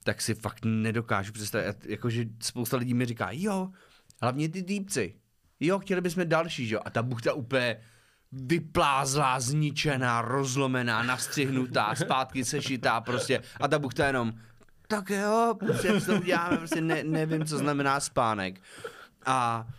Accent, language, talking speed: native, Czech, 135 wpm